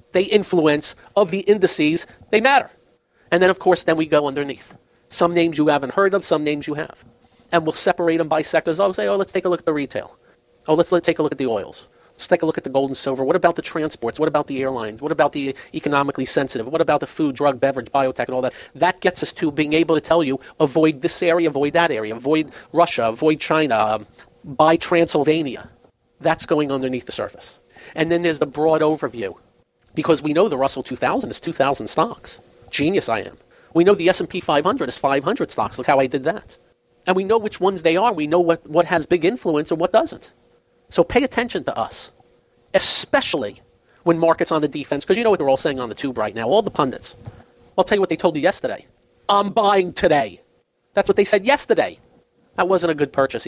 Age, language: 40-59, English